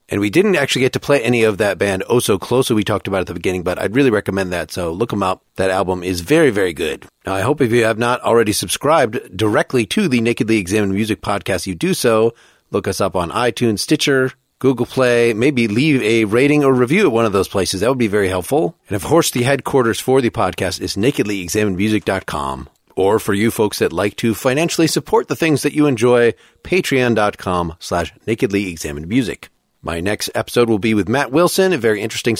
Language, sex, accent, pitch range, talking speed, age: English, male, American, 100-130 Hz, 220 wpm, 40-59